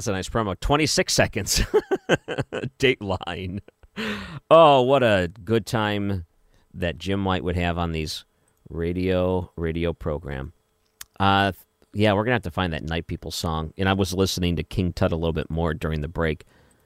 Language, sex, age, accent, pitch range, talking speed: English, male, 40-59, American, 85-115 Hz, 170 wpm